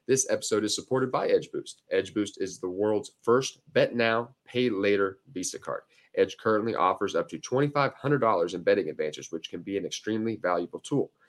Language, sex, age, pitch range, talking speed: English, male, 30-49, 105-155 Hz, 175 wpm